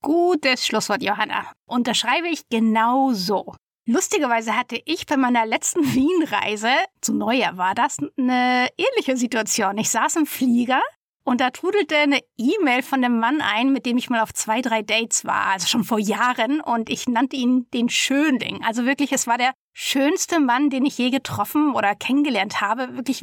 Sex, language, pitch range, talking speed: female, German, 235-285 Hz, 175 wpm